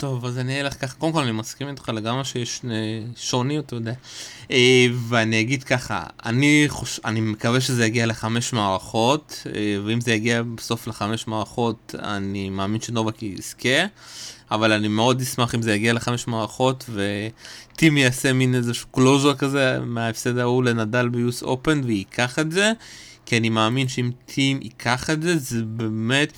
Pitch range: 115-140 Hz